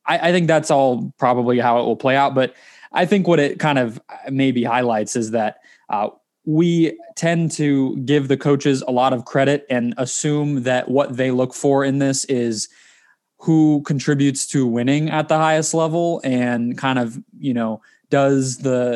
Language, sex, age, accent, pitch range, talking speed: English, male, 20-39, American, 125-150 Hz, 180 wpm